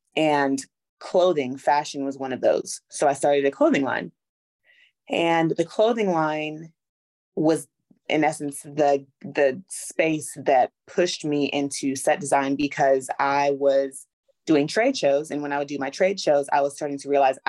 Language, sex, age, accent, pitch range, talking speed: English, female, 30-49, American, 140-165 Hz, 165 wpm